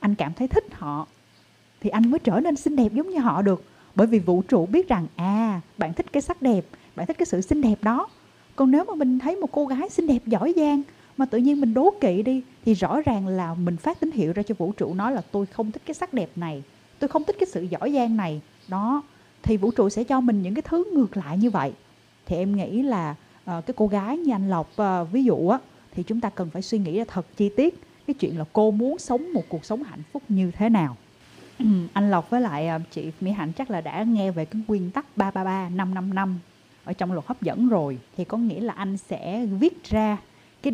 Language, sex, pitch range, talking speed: Vietnamese, female, 180-255 Hz, 245 wpm